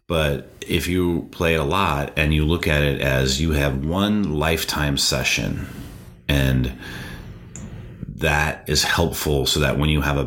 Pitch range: 70-80 Hz